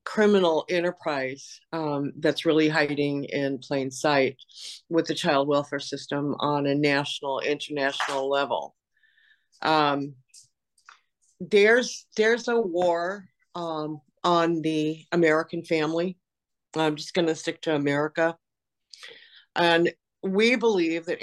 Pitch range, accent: 150-180 Hz, American